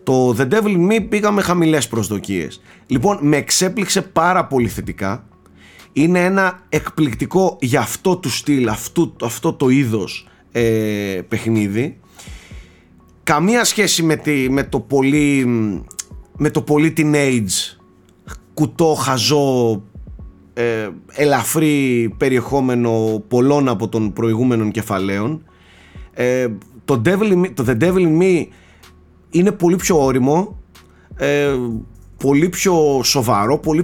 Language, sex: Greek, male